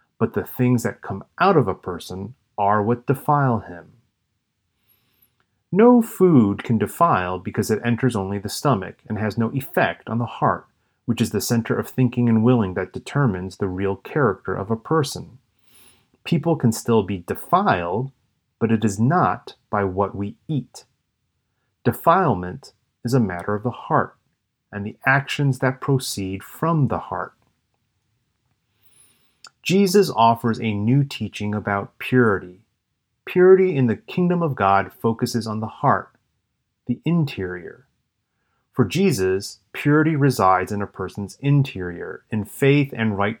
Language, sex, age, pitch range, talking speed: English, male, 30-49, 100-130 Hz, 145 wpm